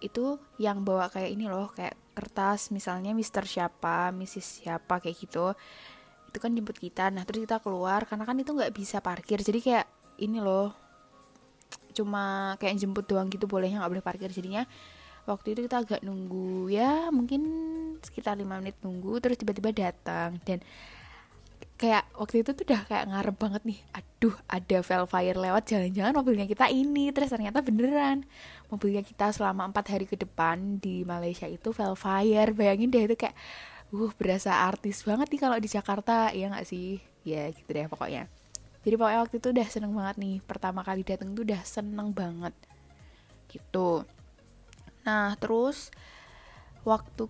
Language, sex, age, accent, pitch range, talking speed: Indonesian, female, 10-29, native, 190-225 Hz, 160 wpm